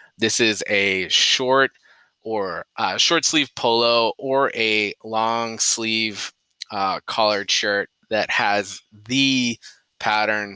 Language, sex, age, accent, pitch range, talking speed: English, male, 20-39, American, 95-115 Hz, 115 wpm